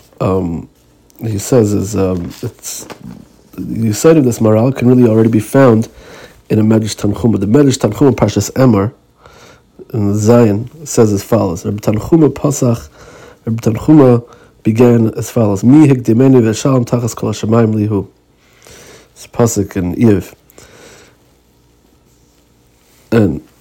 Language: Hebrew